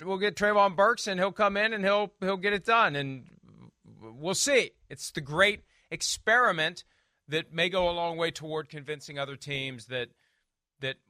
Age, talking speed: 40-59, 180 wpm